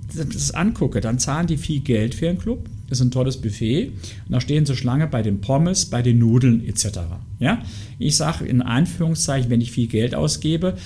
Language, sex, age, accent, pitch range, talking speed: German, male, 50-69, German, 110-145 Hz, 205 wpm